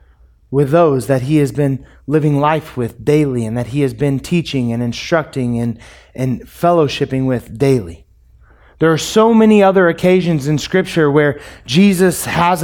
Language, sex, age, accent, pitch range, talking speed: English, male, 20-39, American, 140-180 Hz, 160 wpm